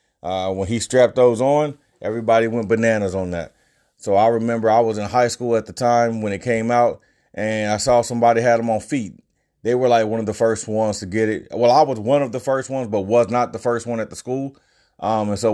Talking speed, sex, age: 250 wpm, male, 30-49